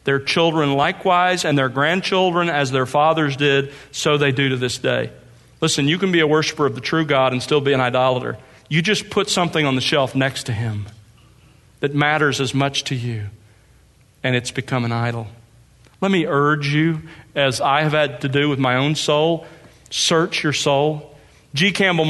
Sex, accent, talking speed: male, American, 195 wpm